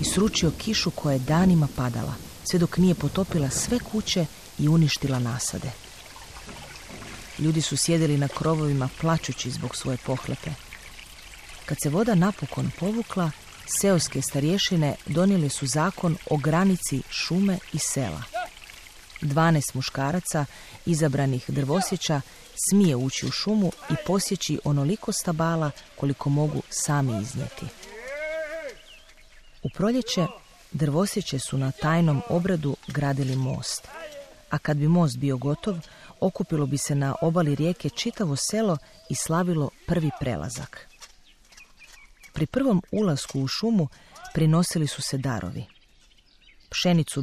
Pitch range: 140-180 Hz